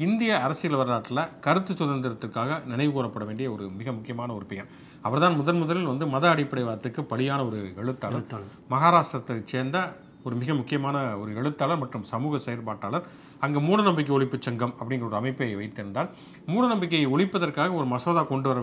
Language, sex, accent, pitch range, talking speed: English, male, Indian, 115-150 Hz, 150 wpm